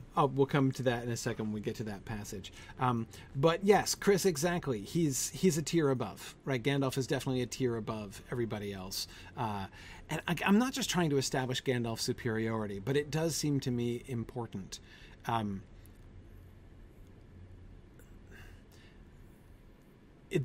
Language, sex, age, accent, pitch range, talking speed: English, male, 40-59, American, 110-140 Hz, 155 wpm